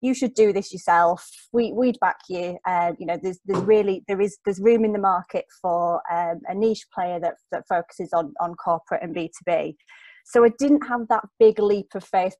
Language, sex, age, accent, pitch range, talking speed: English, female, 20-39, British, 180-220 Hz, 220 wpm